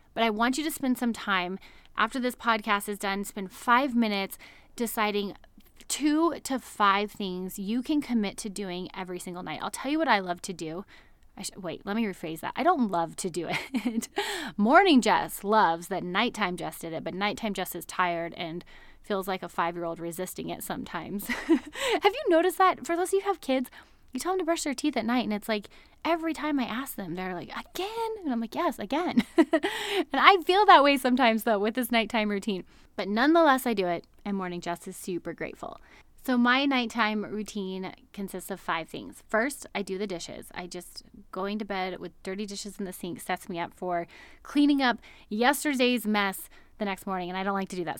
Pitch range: 190-265 Hz